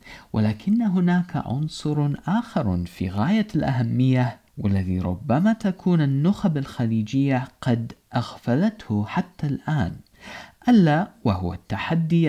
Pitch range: 105-170 Hz